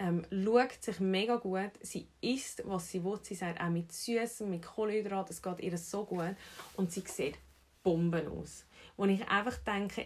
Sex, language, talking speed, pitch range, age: female, German, 190 wpm, 175-220 Hz, 30-49